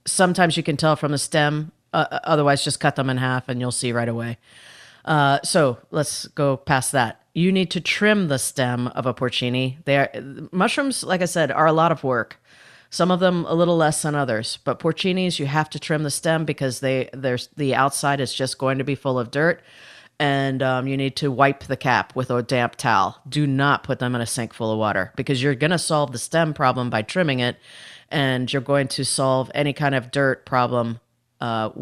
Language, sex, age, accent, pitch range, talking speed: English, female, 30-49, American, 125-155 Hz, 220 wpm